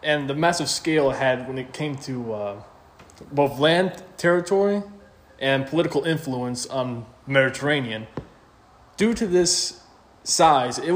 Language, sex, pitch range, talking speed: English, male, 130-160 Hz, 130 wpm